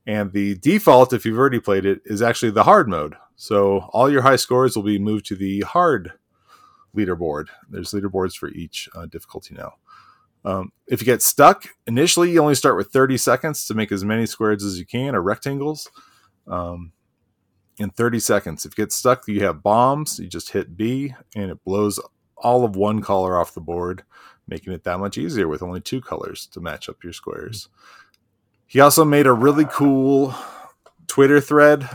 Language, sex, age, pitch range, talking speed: English, male, 30-49, 95-125 Hz, 190 wpm